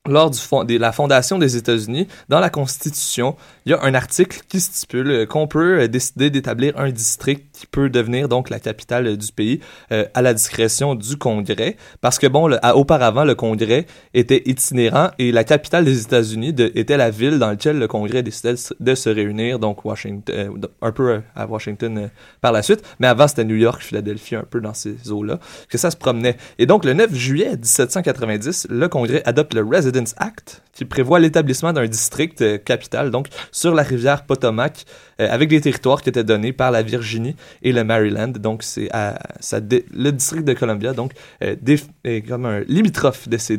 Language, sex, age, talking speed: French, male, 20-39, 200 wpm